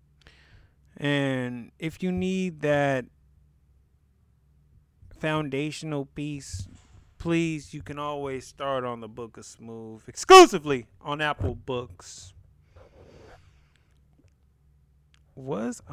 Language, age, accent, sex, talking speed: English, 30-49, American, male, 85 wpm